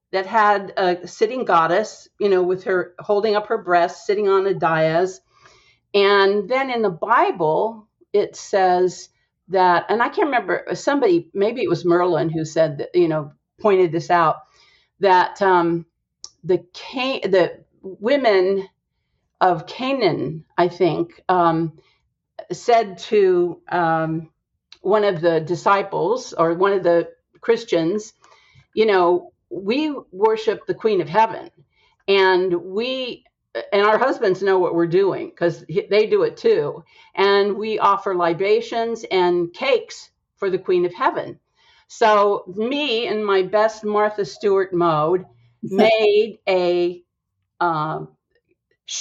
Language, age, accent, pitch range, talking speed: English, 50-69, American, 175-240 Hz, 130 wpm